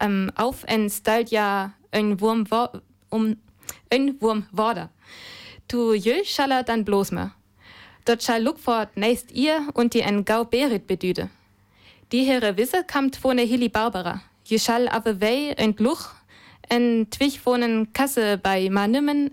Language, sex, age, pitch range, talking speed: German, female, 20-39, 200-245 Hz, 135 wpm